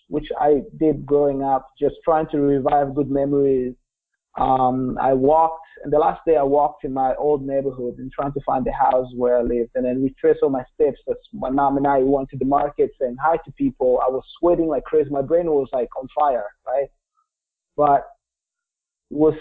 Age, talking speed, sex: 20-39, 205 wpm, male